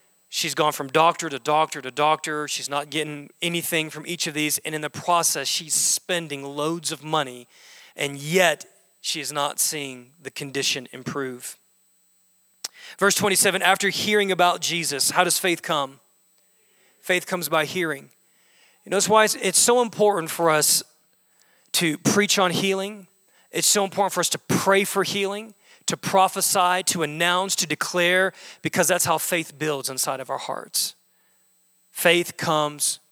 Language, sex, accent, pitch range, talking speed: English, male, American, 150-190 Hz, 160 wpm